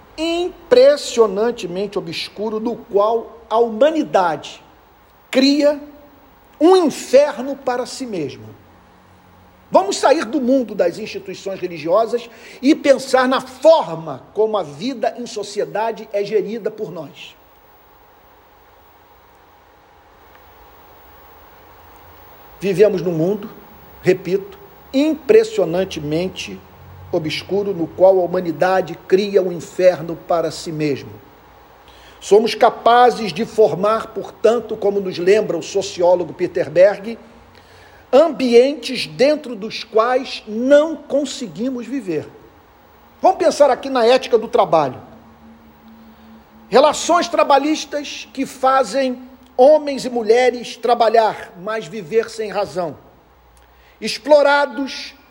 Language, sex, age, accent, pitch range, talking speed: Portuguese, male, 50-69, Brazilian, 180-265 Hz, 95 wpm